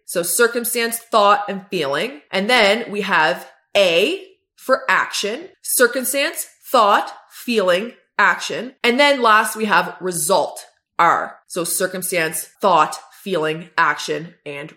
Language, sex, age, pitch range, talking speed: English, female, 20-39, 190-255 Hz, 120 wpm